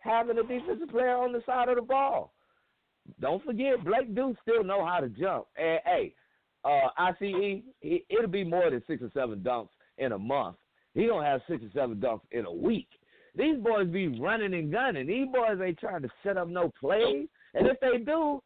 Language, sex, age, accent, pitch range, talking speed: English, male, 50-69, American, 160-260 Hz, 220 wpm